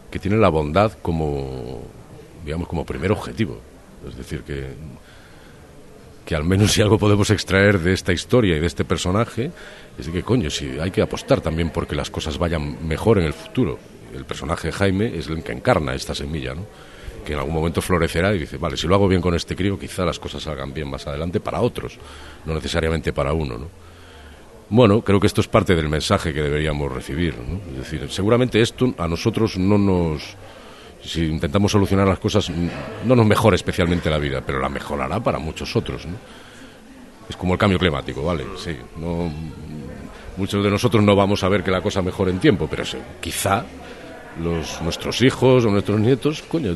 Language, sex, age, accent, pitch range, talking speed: English, male, 50-69, Spanish, 75-100 Hz, 190 wpm